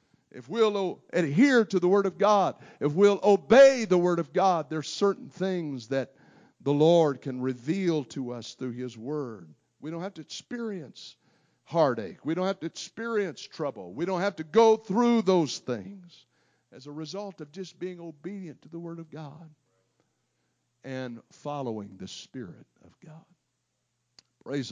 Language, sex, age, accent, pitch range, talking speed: English, male, 50-69, American, 125-165 Hz, 165 wpm